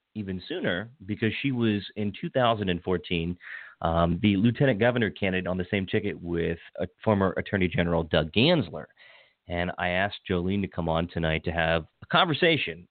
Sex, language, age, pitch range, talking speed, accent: male, English, 30-49, 90-110 Hz, 165 wpm, American